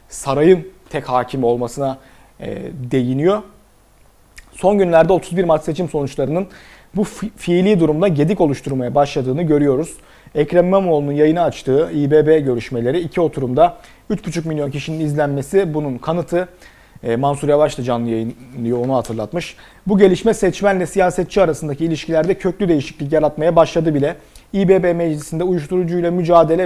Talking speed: 120 wpm